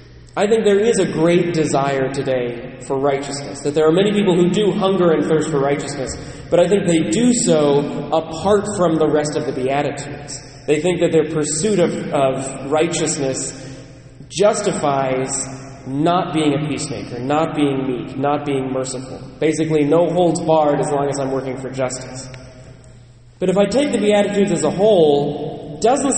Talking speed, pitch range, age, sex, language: 170 wpm, 145-195 Hz, 20-39, male, English